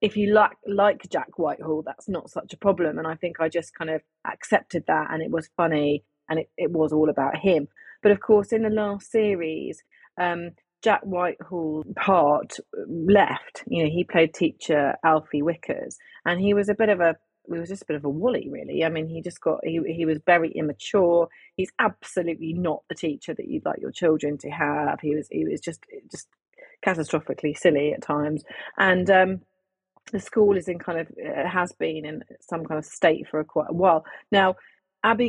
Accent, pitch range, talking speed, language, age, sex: British, 155-195 Hz, 205 wpm, English, 30-49, female